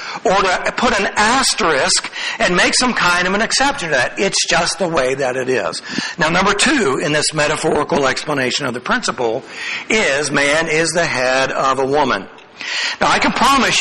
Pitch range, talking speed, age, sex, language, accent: 145-225 Hz, 185 wpm, 60-79, male, English, American